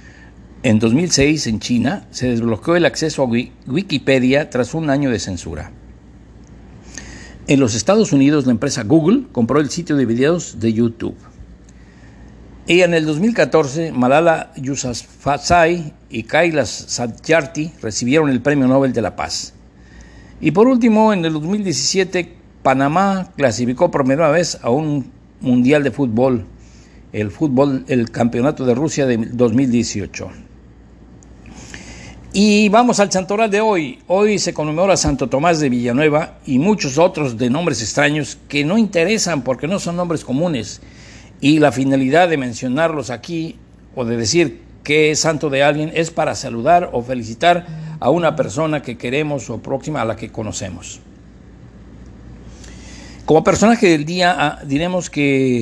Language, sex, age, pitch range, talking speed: Spanish, male, 60-79, 125-170 Hz, 140 wpm